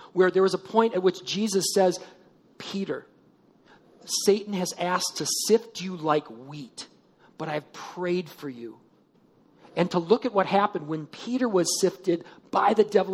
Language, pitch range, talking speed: English, 165-205 Hz, 165 wpm